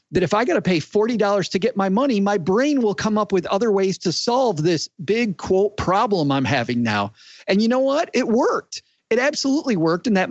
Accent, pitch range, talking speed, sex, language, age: American, 145-205 Hz, 225 wpm, male, English, 40-59